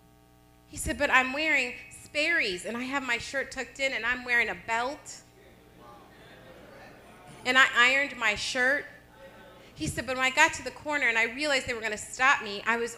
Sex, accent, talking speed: female, American, 200 wpm